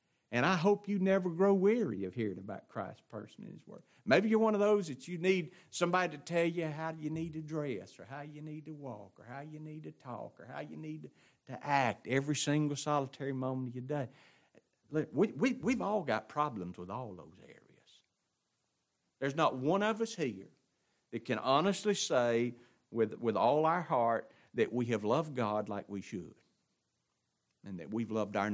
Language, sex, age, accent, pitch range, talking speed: English, male, 50-69, American, 110-170 Hz, 200 wpm